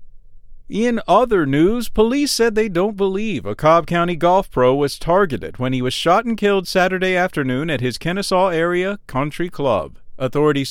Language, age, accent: English, 40-59, American